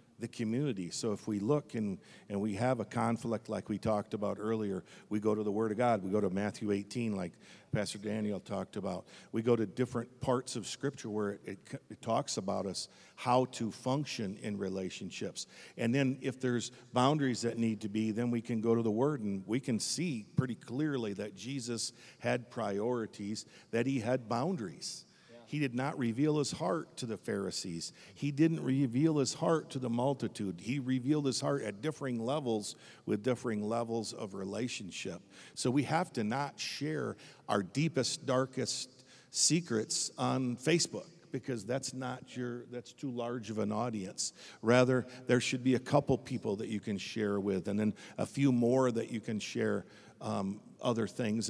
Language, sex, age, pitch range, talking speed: English, male, 50-69, 105-130 Hz, 185 wpm